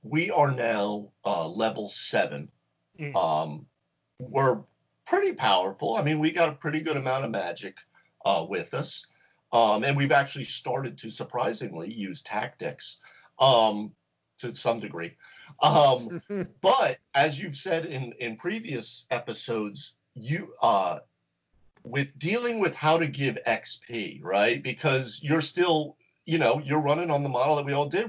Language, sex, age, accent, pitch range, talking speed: English, male, 50-69, American, 120-160 Hz, 145 wpm